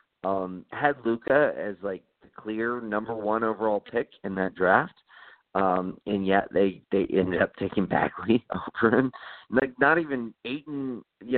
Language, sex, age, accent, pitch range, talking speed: English, male, 40-59, American, 95-140 Hz, 160 wpm